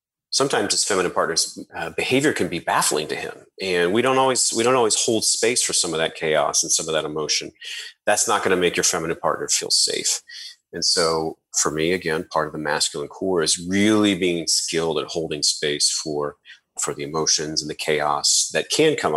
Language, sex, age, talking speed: English, male, 30-49, 205 wpm